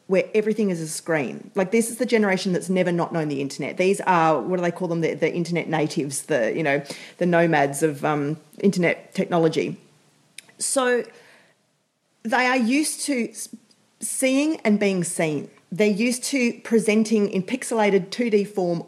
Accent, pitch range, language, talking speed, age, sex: Australian, 175-220 Hz, English, 170 wpm, 30-49, female